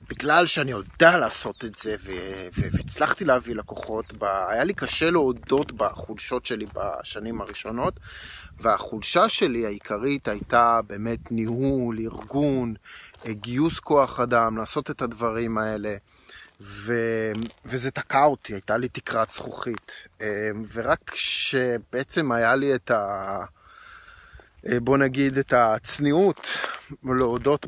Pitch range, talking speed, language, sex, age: 110-125 Hz, 110 wpm, Hebrew, male, 30-49